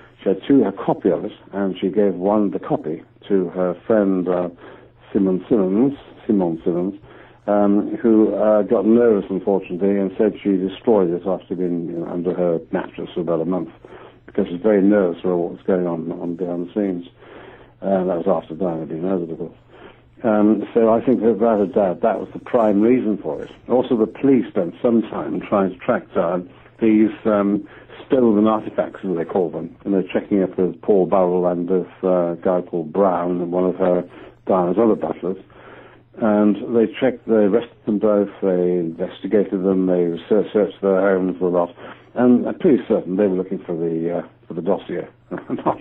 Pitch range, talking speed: 90-110 Hz, 200 wpm